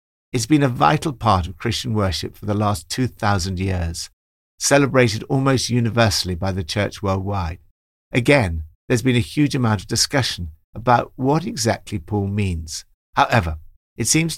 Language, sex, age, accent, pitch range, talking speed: English, male, 60-79, British, 95-125 Hz, 150 wpm